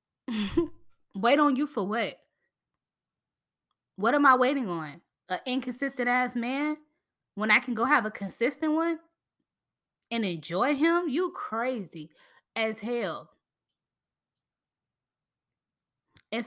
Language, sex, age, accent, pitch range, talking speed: English, female, 10-29, American, 200-265 Hz, 110 wpm